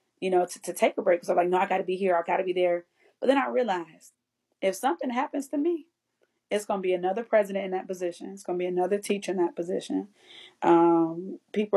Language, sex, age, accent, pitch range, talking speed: English, female, 30-49, American, 180-215 Hz, 260 wpm